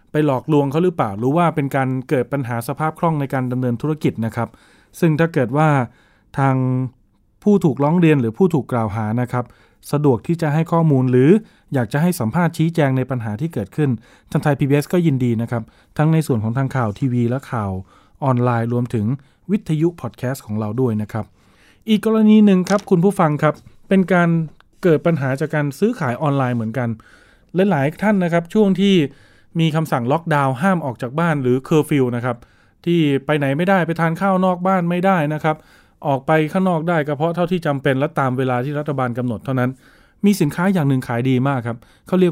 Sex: male